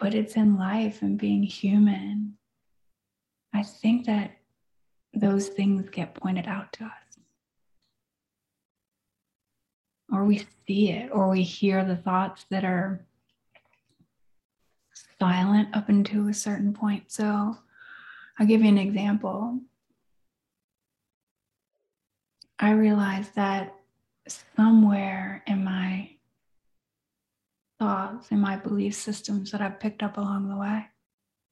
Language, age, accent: English, 30-49, American